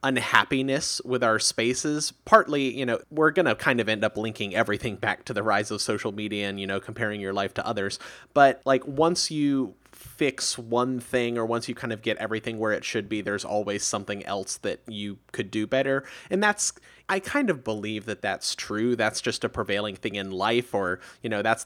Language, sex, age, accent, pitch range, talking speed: English, male, 30-49, American, 105-135 Hz, 215 wpm